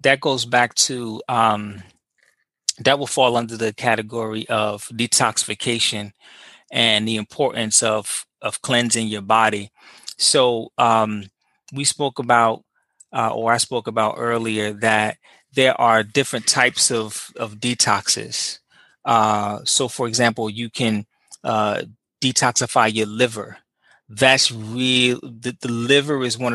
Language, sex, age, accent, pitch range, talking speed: English, male, 20-39, American, 110-125 Hz, 130 wpm